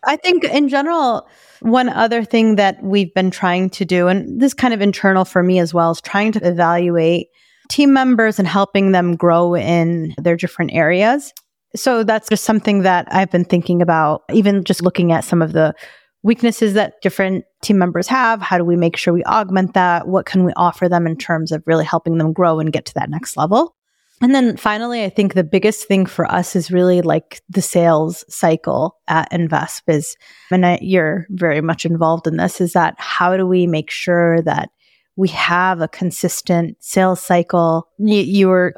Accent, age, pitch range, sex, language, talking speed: American, 30-49, 170-210 Hz, female, English, 200 wpm